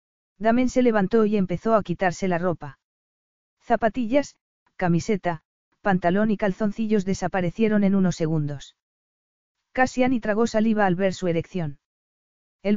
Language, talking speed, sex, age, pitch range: Spanish, 125 wpm, female, 40-59, 180-215 Hz